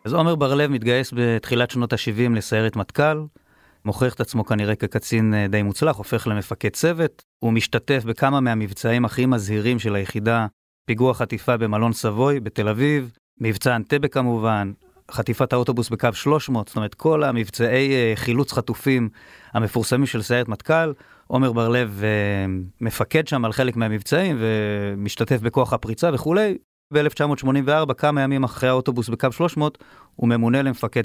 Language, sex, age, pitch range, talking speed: Hebrew, male, 30-49, 110-135 Hz, 135 wpm